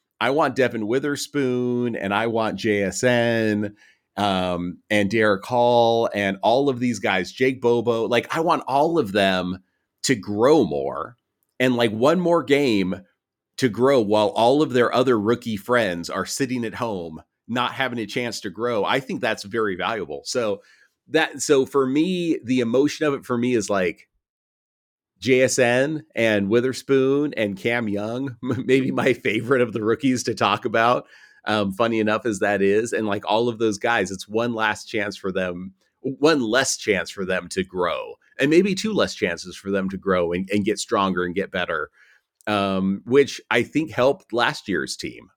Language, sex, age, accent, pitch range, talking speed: English, male, 40-59, American, 95-130 Hz, 175 wpm